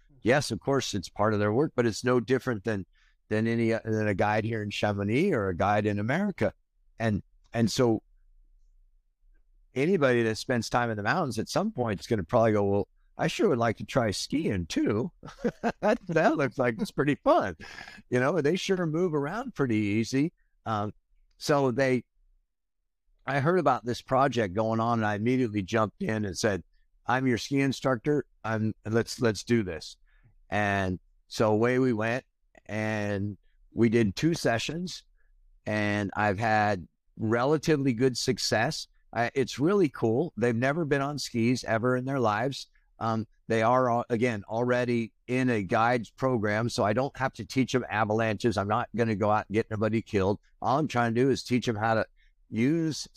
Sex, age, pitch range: male, 60-79, 105-130 Hz